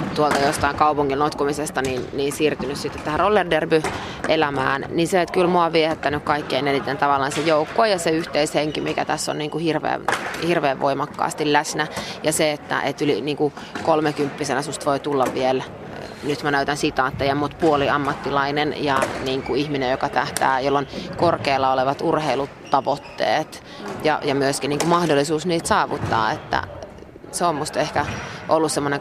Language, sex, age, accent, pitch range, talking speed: Finnish, female, 30-49, native, 140-155 Hz, 165 wpm